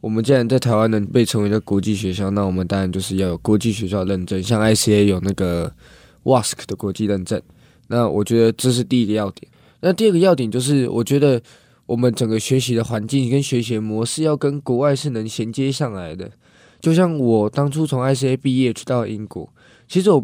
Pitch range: 110-140 Hz